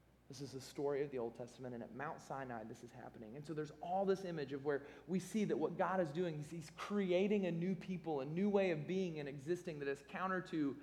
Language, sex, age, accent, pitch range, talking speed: English, male, 20-39, American, 140-180 Hz, 260 wpm